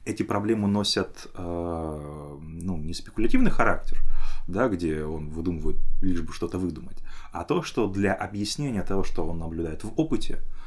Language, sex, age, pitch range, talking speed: Russian, male, 20-39, 80-95 Hz, 140 wpm